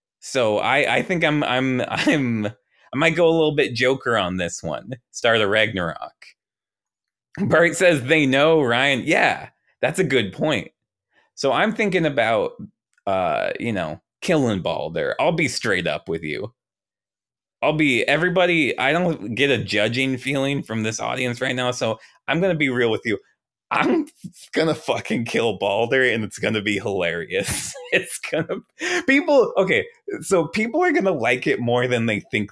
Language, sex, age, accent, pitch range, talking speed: English, male, 20-39, American, 105-170 Hz, 165 wpm